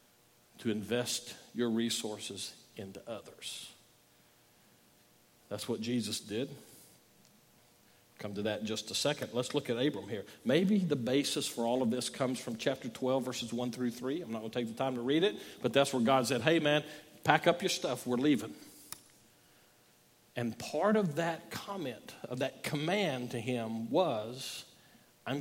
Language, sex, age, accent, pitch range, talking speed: English, male, 50-69, American, 120-170 Hz, 170 wpm